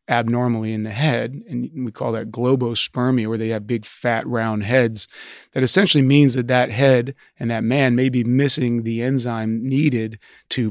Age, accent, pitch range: 30-49, American, 115-130 Hz